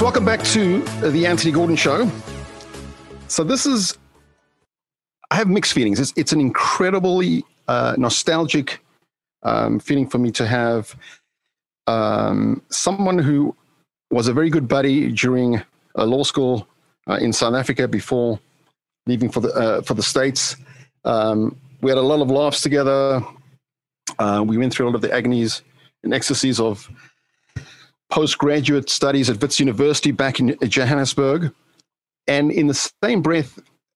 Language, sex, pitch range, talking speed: English, male, 115-145 Hz, 145 wpm